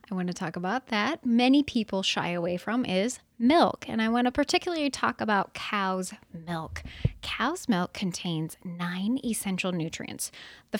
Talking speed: 160 wpm